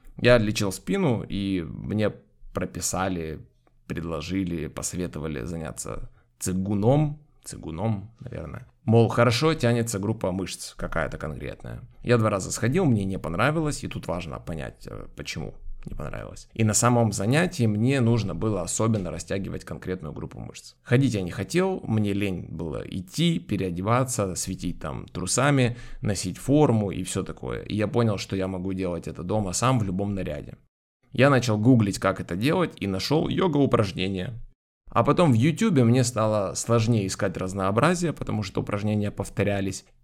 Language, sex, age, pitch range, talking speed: Ukrainian, male, 20-39, 95-125 Hz, 145 wpm